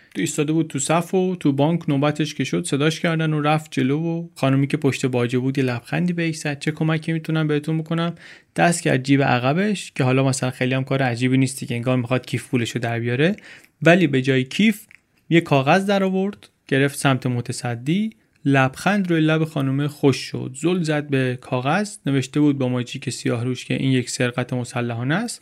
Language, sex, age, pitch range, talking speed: Persian, male, 30-49, 130-160 Hz, 190 wpm